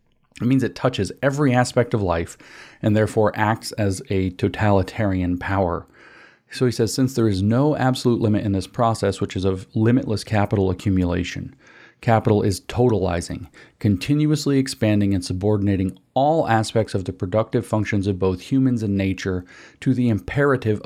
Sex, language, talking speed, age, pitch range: male, English, 155 wpm, 40-59, 95-120 Hz